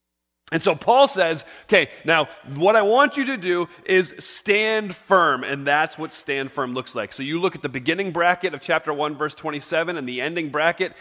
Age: 30-49